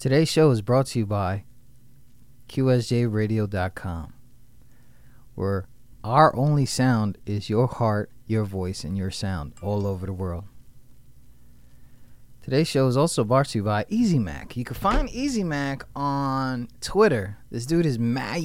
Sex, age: male, 20-39